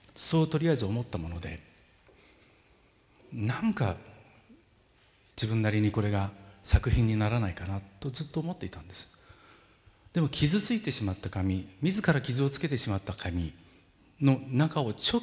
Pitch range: 95-145 Hz